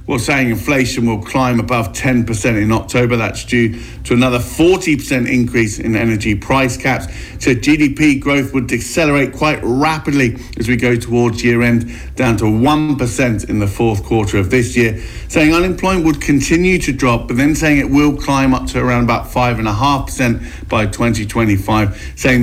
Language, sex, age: English, male, 50-69